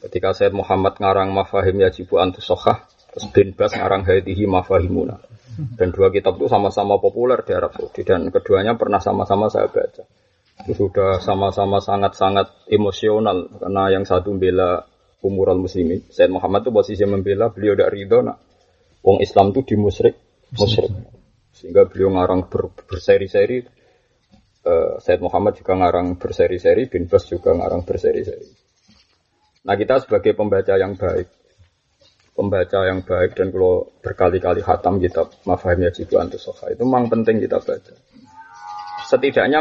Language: Indonesian